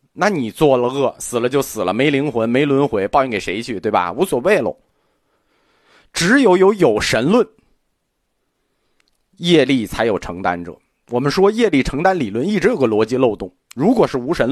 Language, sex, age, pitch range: Chinese, male, 30-49, 120-195 Hz